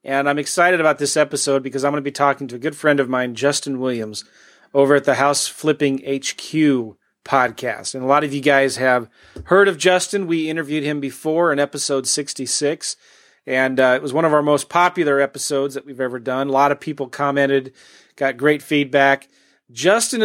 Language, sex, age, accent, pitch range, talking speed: English, male, 30-49, American, 135-160 Hz, 200 wpm